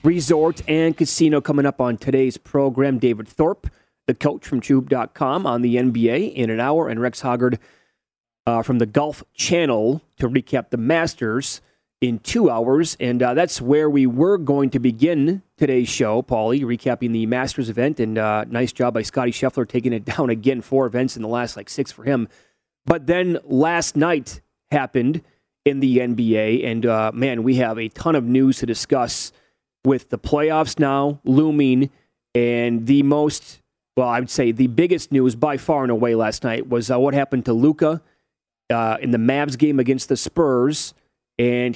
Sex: male